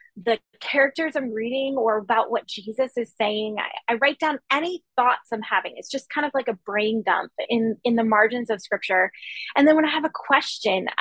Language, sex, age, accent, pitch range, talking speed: English, female, 20-39, American, 220-275 Hz, 215 wpm